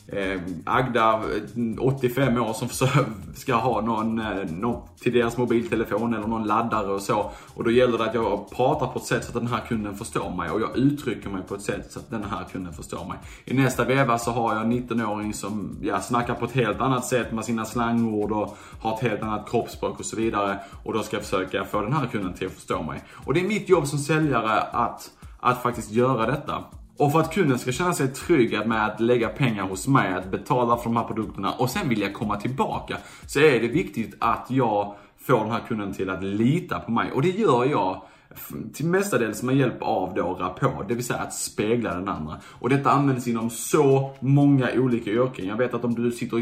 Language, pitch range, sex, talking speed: Swedish, 105-130 Hz, male, 220 wpm